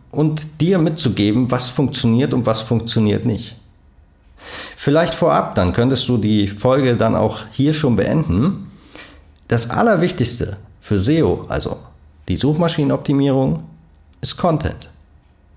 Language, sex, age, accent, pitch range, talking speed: German, male, 40-59, German, 85-120 Hz, 115 wpm